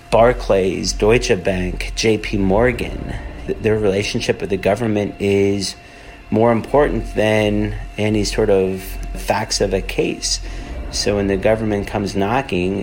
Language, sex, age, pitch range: English, male, 40-59, 100-115 Hz